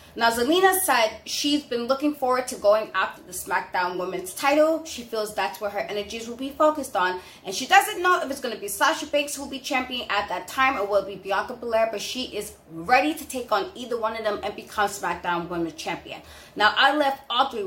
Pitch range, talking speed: 205-280 Hz, 235 wpm